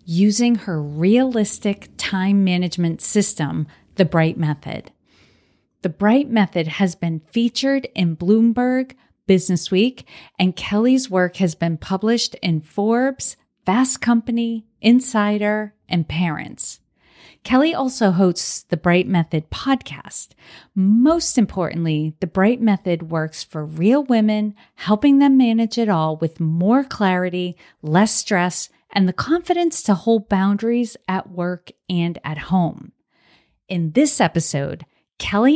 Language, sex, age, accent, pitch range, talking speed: English, female, 40-59, American, 170-230 Hz, 120 wpm